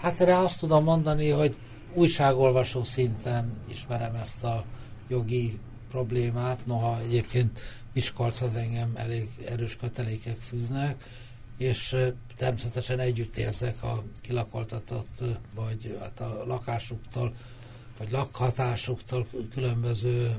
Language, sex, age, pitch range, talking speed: Hungarian, male, 60-79, 115-130 Hz, 100 wpm